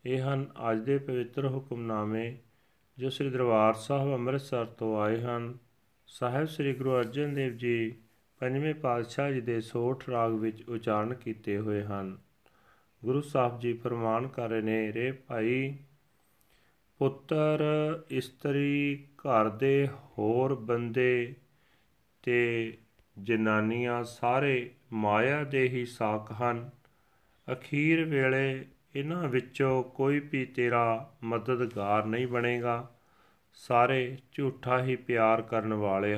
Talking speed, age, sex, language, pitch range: 105 wpm, 40-59, male, Punjabi, 115-135 Hz